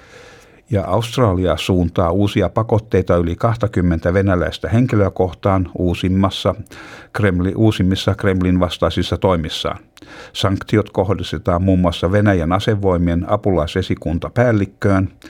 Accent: native